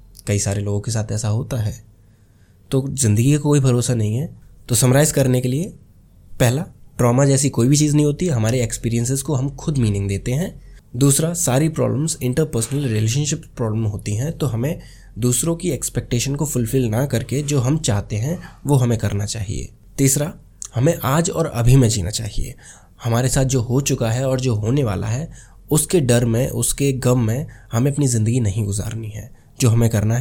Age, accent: 20-39, native